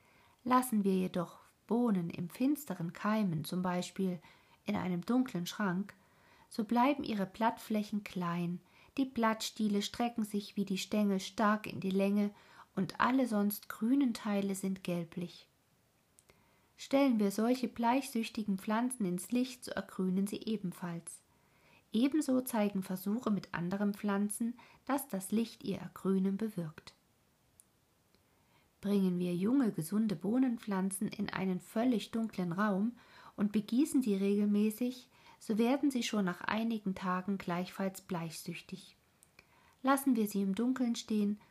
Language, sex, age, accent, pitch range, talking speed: German, female, 50-69, German, 190-230 Hz, 125 wpm